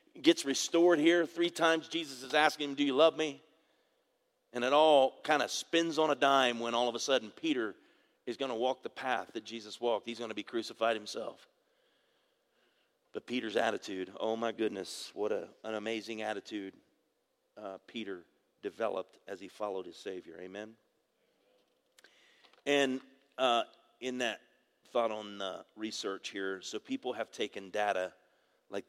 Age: 40-59